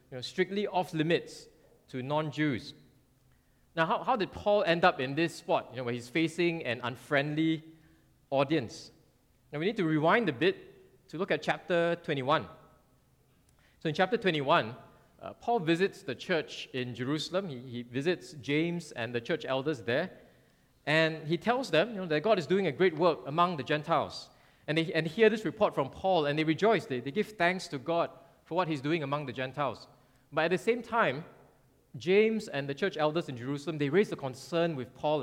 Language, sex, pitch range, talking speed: English, male, 130-170 Hz, 190 wpm